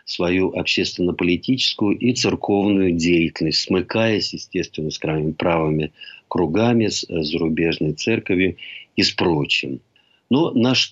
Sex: male